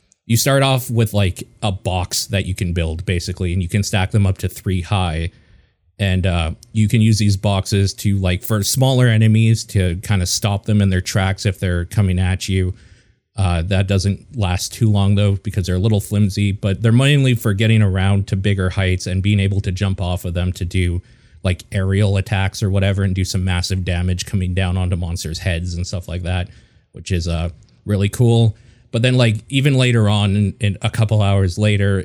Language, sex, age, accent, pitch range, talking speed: English, male, 30-49, American, 95-110 Hz, 210 wpm